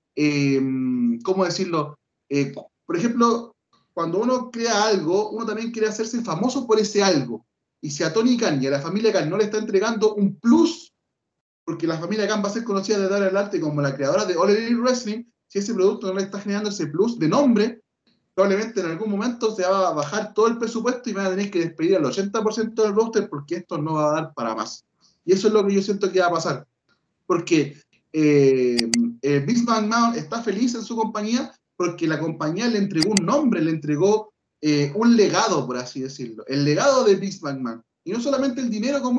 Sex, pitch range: male, 165-230 Hz